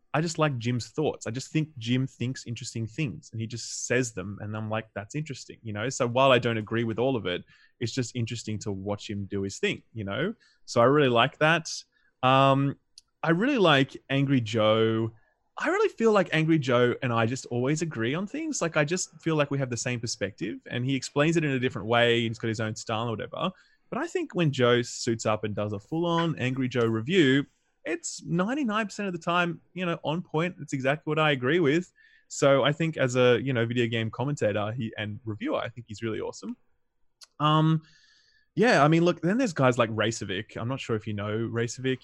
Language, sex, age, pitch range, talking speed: English, male, 20-39, 115-155 Hz, 225 wpm